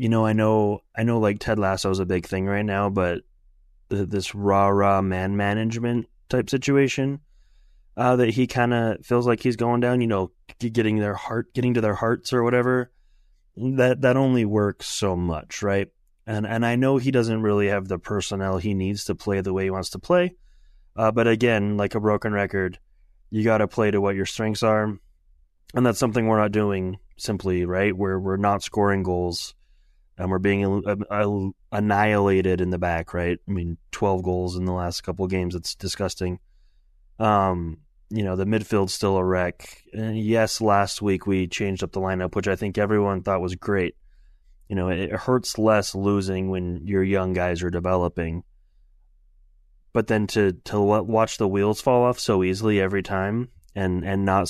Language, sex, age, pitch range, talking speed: English, male, 20-39, 95-110 Hz, 190 wpm